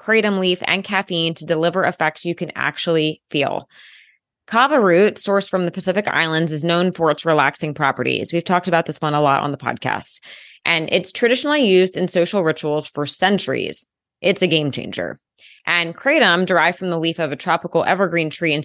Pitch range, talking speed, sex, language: 160-205 Hz, 190 wpm, female, English